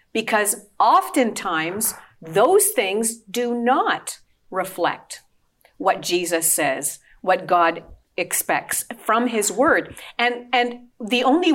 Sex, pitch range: female, 205-270 Hz